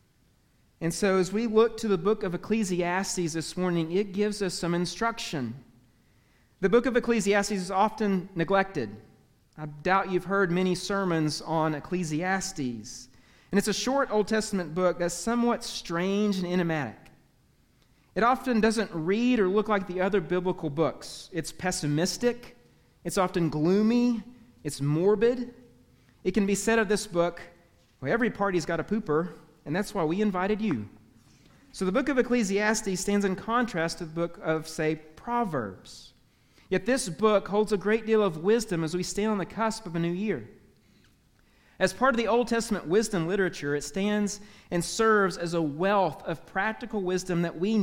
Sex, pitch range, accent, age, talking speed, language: male, 165-215 Hz, American, 40-59, 170 wpm, English